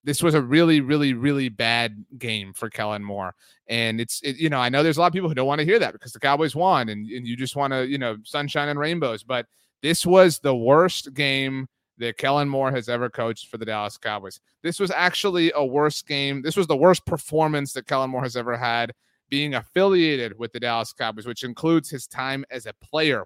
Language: English